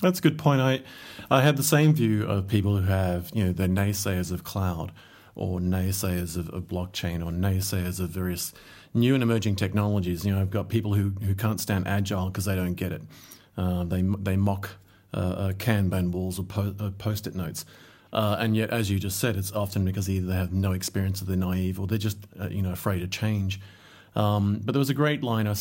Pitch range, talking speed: 95-115 Hz, 225 wpm